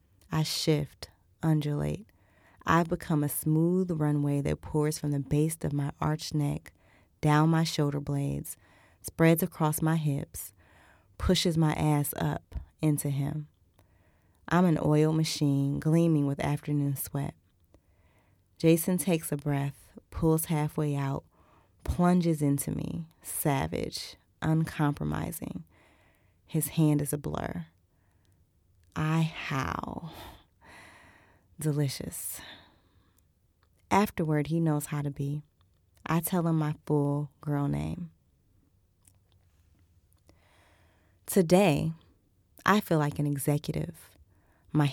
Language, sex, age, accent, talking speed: English, female, 20-39, American, 105 wpm